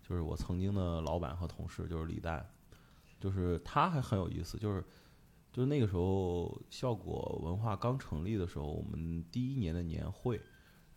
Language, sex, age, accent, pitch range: Chinese, male, 20-39, native, 90-125 Hz